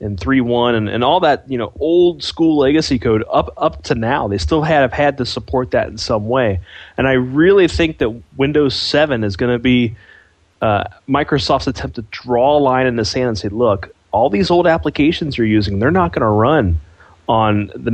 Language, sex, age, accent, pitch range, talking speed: English, male, 30-49, American, 110-140 Hz, 210 wpm